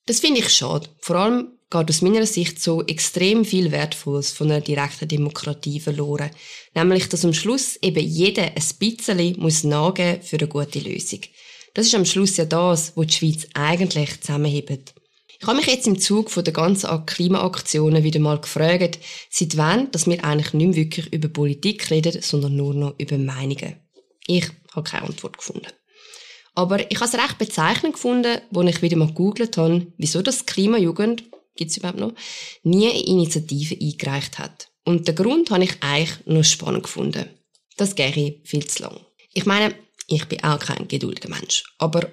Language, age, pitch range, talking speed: German, 20-39, 155-195 Hz, 180 wpm